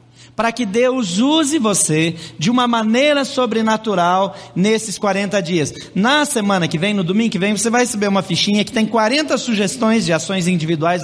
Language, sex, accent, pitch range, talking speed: Portuguese, male, Brazilian, 170-225 Hz, 175 wpm